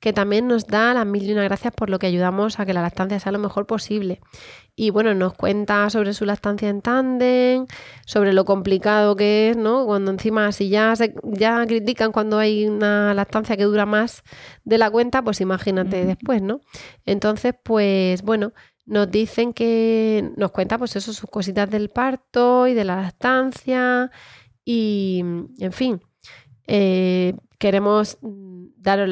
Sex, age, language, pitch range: female, 30-49, Spanish, 190-225 Hz